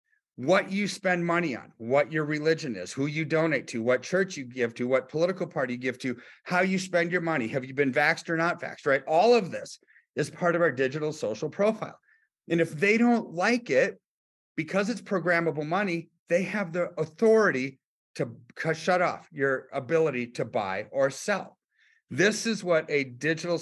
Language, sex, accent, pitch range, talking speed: English, male, American, 150-200 Hz, 190 wpm